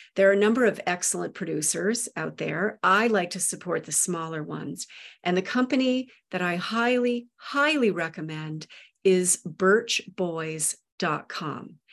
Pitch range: 170-215 Hz